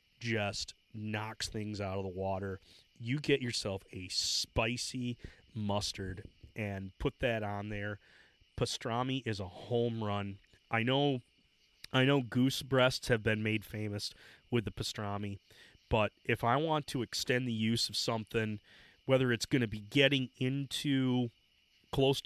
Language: English